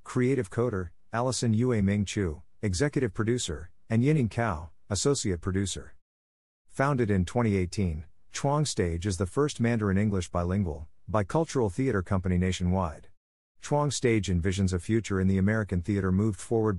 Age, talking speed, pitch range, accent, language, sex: 50-69, 135 wpm, 90-115 Hz, American, English, male